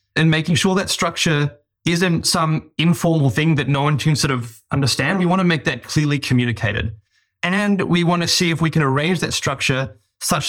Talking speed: 200 wpm